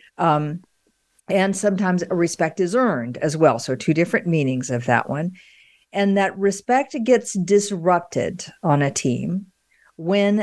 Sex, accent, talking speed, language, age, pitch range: female, American, 140 wpm, English, 50-69, 145-195 Hz